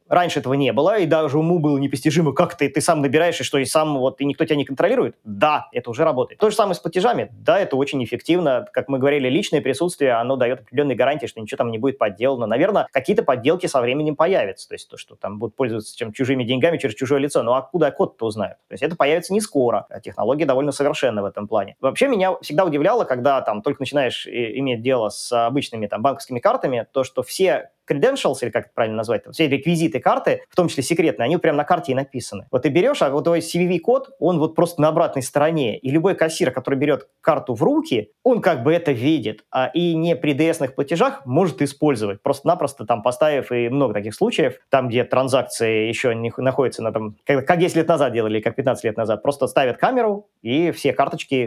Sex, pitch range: male, 125-165 Hz